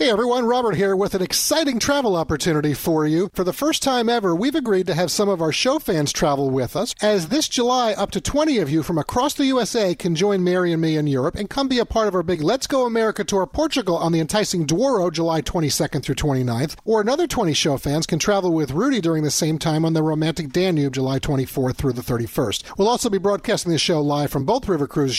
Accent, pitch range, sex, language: American, 160-240 Hz, male, English